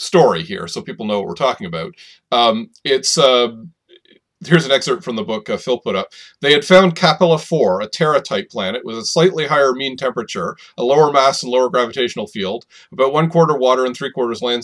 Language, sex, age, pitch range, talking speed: English, male, 40-59, 125-175 Hz, 200 wpm